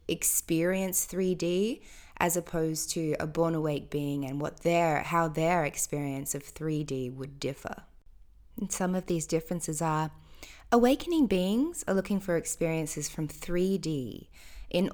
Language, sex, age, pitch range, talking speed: English, female, 20-39, 150-185 Hz, 135 wpm